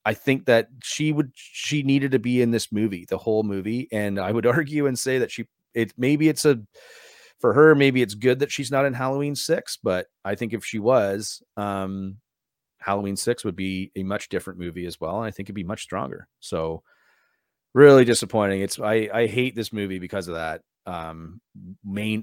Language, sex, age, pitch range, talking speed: English, male, 30-49, 95-115 Hz, 205 wpm